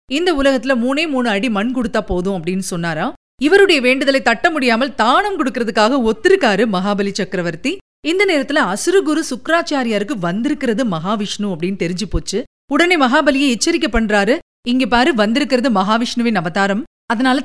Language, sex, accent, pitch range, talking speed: Tamil, female, native, 210-290 Hz, 130 wpm